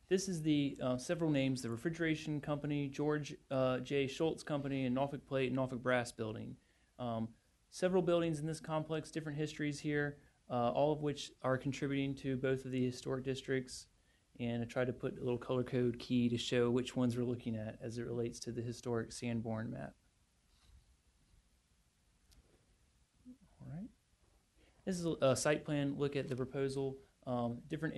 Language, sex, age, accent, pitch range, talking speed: English, male, 30-49, American, 120-140 Hz, 170 wpm